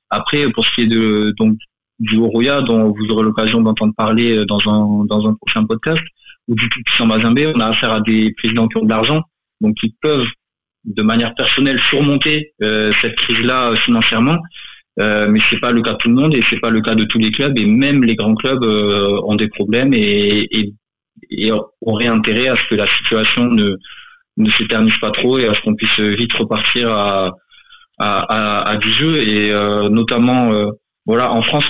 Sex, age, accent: male, 20-39, French